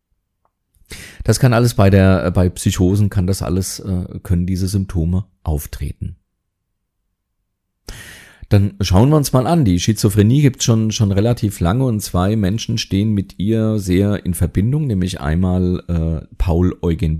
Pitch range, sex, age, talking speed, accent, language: 85-100 Hz, male, 40-59, 145 wpm, German, German